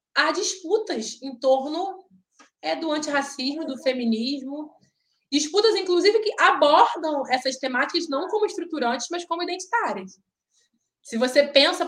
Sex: female